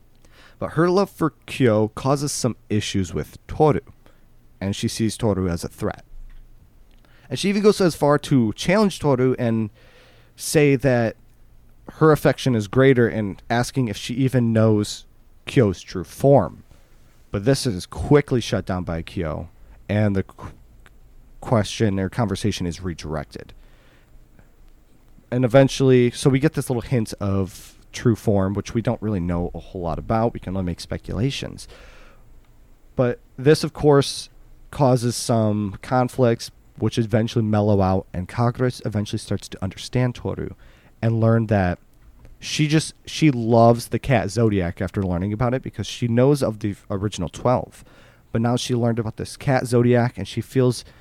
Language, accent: English, American